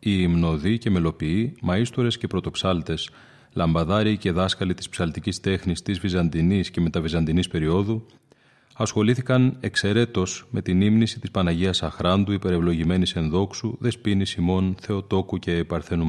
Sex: male